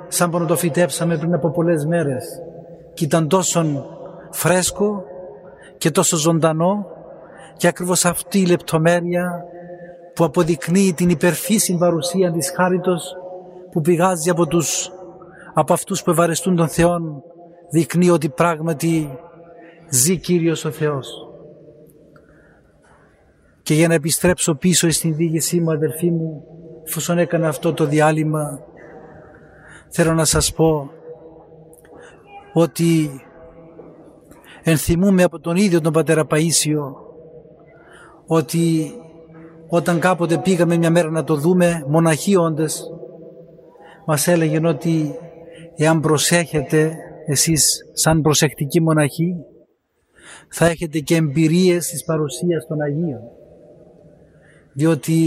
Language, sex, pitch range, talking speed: Greek, male, 160-175 Hz, 110 wpm